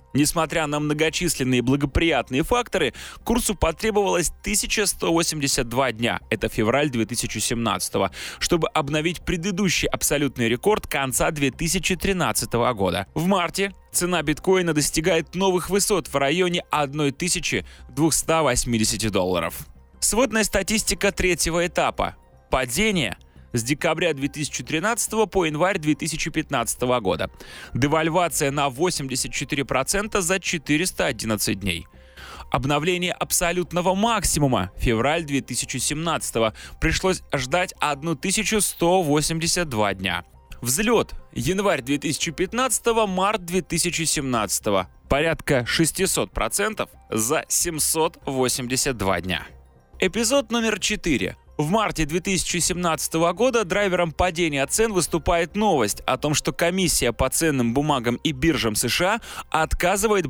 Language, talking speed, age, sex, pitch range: Russian, 90 wpm, 20-39, male, 130-180 Hz